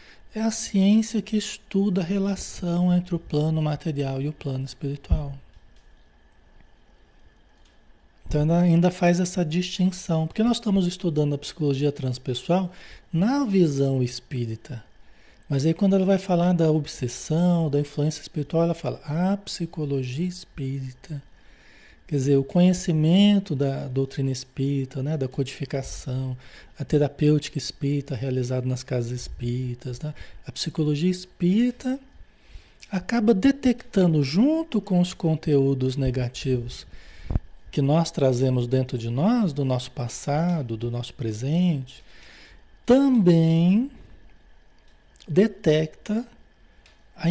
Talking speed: 115 wpm